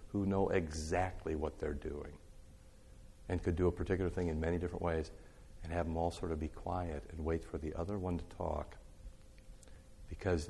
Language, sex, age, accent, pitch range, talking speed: English, male, 50-69, American, 80-100 Hz, 190 wpm